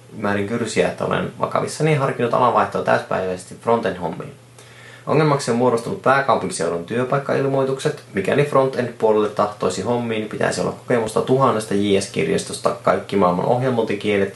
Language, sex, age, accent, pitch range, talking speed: Finnish, male, 20-39, native, 95-130 Hz, 115 wpm